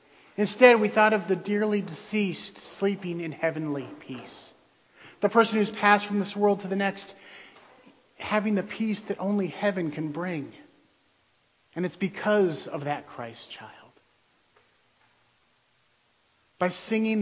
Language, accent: English, American